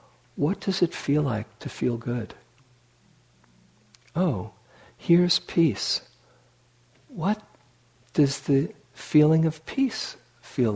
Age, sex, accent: 60-79, male, American